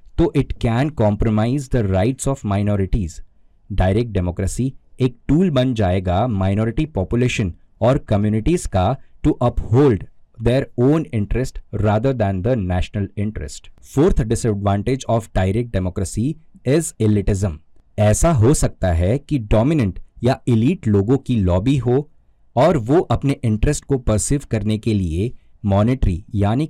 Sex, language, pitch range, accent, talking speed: male, Hindi, 95-130 Hz, native, 130 wpm